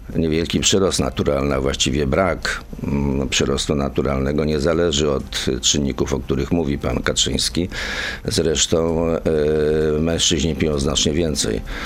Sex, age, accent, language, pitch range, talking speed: male, 50-69, native, Polish, 70-85 Hz, 120 wpm